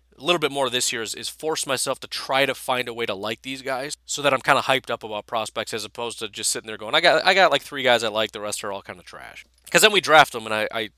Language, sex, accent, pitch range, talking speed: English, male, American, 110-145 Hz, 335 wpm